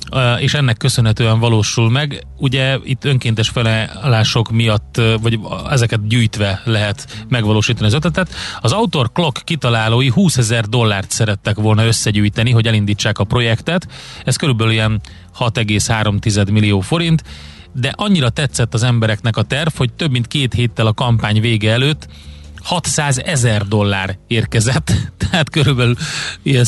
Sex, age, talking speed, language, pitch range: male, 30-49, 135 wpm, Hungarian, 110-130 Hz